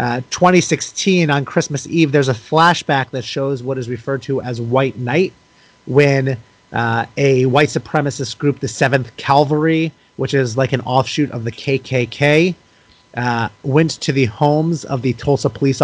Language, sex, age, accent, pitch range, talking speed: English, male, 30-49, American, 125-155 Hz, 165 wpm